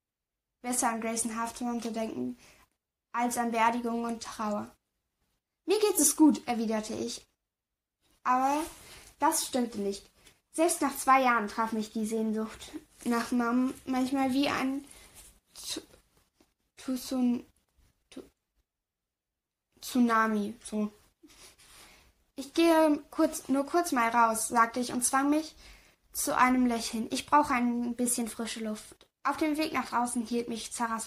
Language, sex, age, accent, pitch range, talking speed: German, female, 10-29, German, 220-280 Hz, 120 wpm